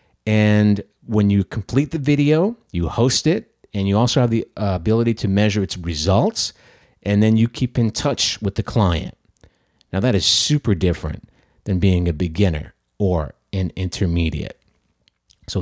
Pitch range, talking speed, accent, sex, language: 95-130 Hz, 160 wpm, American, male, English